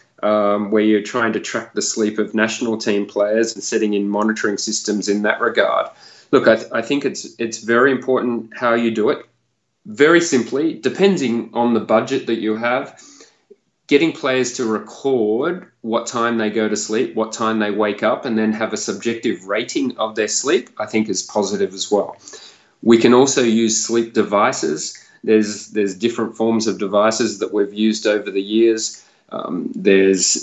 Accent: Australian